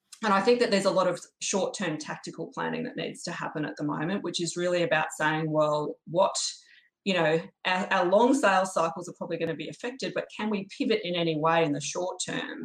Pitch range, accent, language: 165-205 Hz, Australian, English